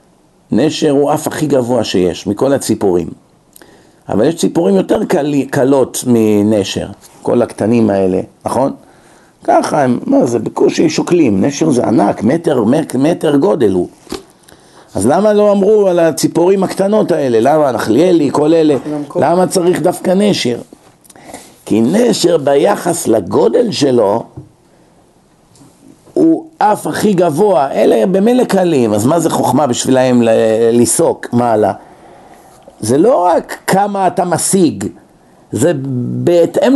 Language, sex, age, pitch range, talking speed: Hebrew, male, 50-69, 135-195 Hz, 125 wpm